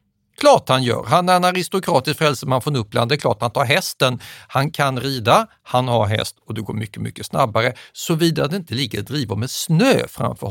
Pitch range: 115-155 Hz